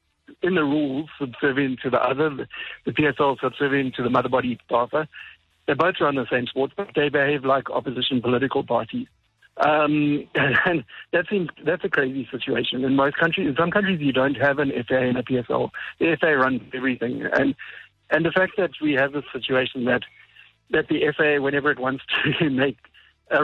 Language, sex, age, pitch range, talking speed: English, male, 60-79, 130-155 Hz, 180 wpm